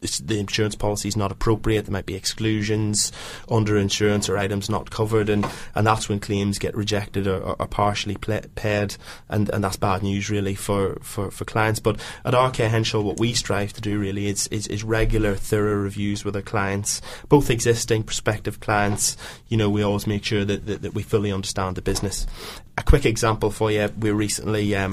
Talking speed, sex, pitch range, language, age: 200 wpm, male, 100-110 Hz, English, 20-39